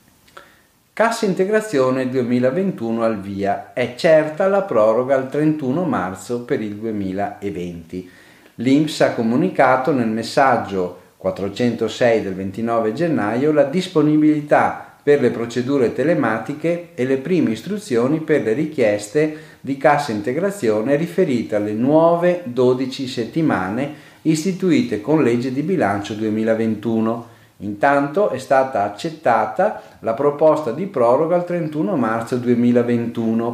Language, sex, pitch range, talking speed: Italian, male, 105-150 Hz, 115 wpm